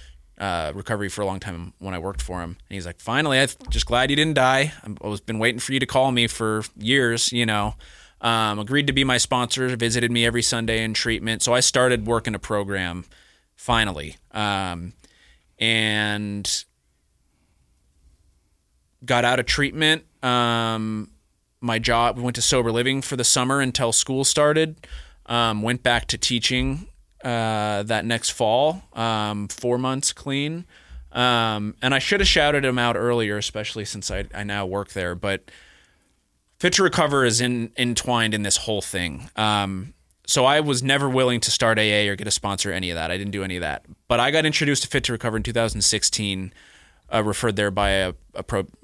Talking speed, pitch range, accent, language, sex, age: 190 wpm, 100-125 Hz, American, English, male, 20-39